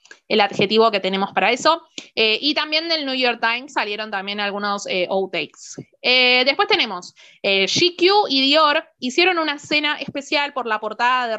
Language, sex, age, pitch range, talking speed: Spanish, female, 20-39, 215-290 Hz, 175 wpm